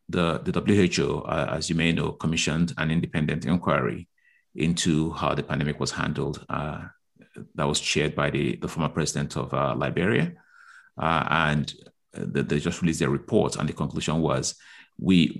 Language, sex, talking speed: English, male, 170 wpm